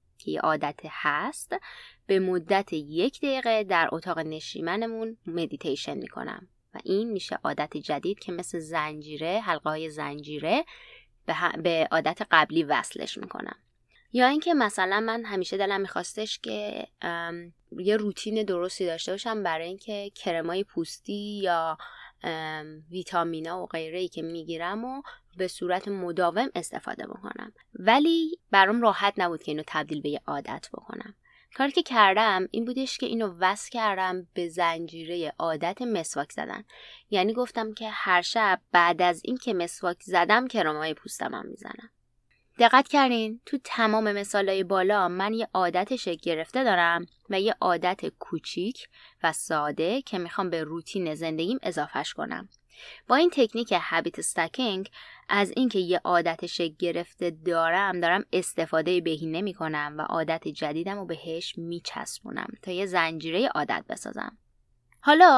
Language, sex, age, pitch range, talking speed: Persian, female, 20-39, 170-220 Hz, 140 wpm